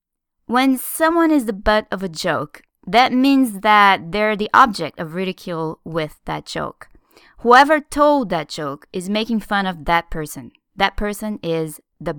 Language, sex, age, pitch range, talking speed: English, female, 20-39, 175-255 Hz, 160 wpm